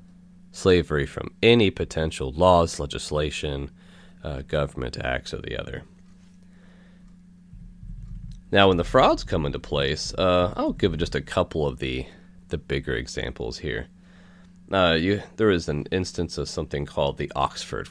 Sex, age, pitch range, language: male, 30-49, 80-100 Hz, English